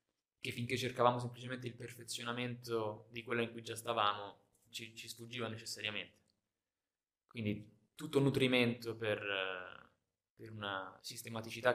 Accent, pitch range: native, 100-120 Hz